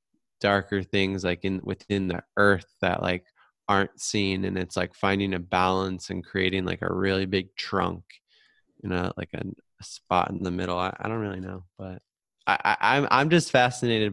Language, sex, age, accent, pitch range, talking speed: English, male, 20-39, American, 95-105 Hz, 190 wpm